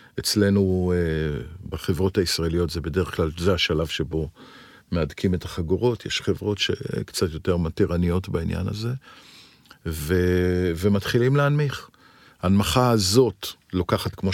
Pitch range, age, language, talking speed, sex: 90-115 Hz, 50-69, Hebrew, 110 wpm, male